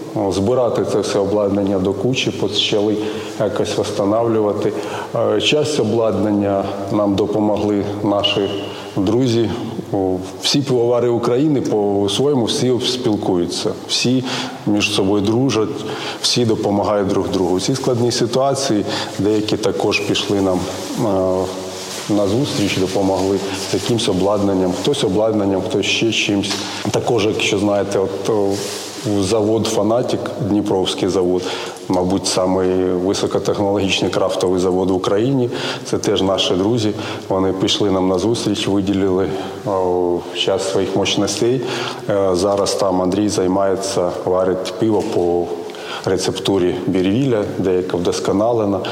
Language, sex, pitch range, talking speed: Ukrainian, male, 95-110 Hz, 100 wpm